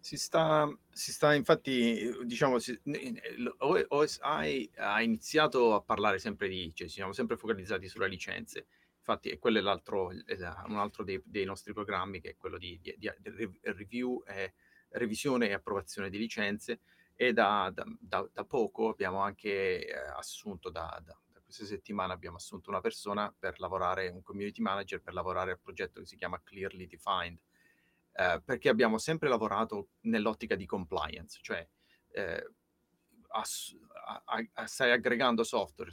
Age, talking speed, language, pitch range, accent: 30-49, 150 wpm, Italian, 95-125 Hz, native